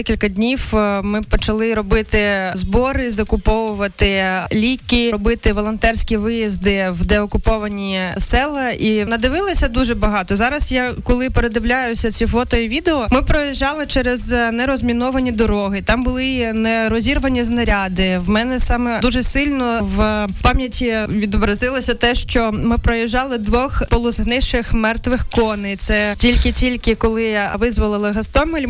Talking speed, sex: 120 wpm, female